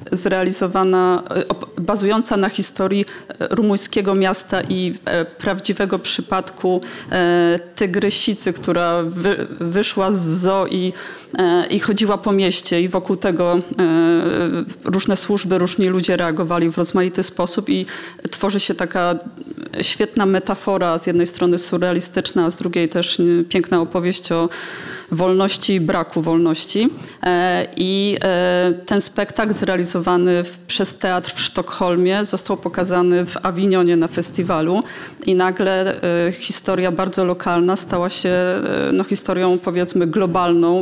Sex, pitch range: female, 180-210 Hz